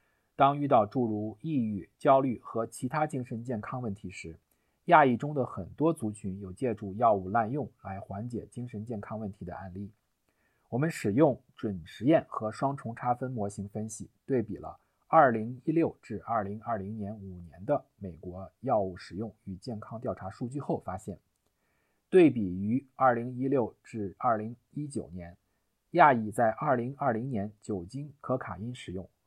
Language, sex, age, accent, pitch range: English, male, 50-69, Chinese, 100-130 Hz